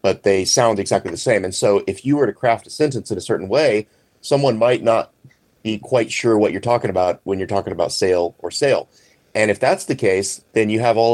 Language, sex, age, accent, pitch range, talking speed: English, male, 30-49, American, 100-125 Hz, 240 wpm